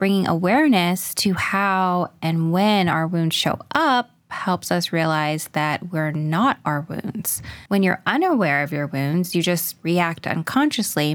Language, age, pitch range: English, 20-39, 170-220 Hz